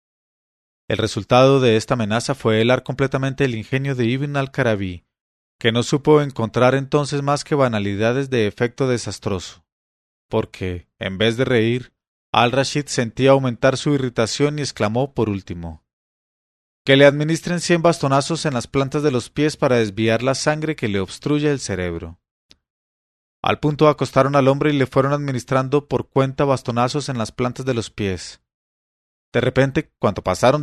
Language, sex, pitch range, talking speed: English, male, 110-140 Hz, 155 wpm